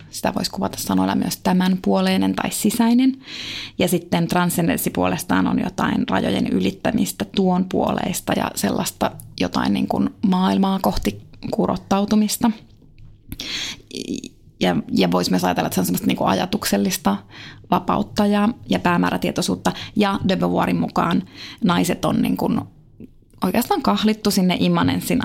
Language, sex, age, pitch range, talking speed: Finnish, female, 20-39, 150-220 Hz, 125 wpm